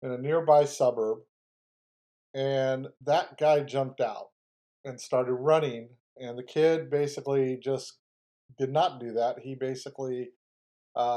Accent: American